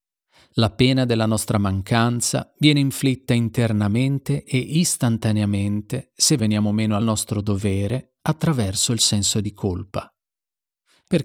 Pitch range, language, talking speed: 105-135 Hz, Italian, 115 wpm